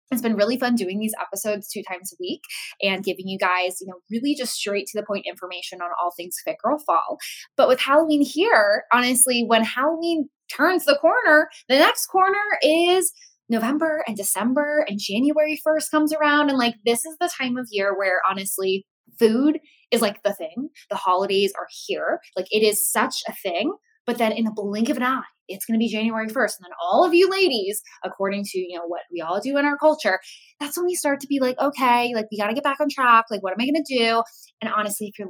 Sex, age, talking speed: female, 10-29, 230 wpm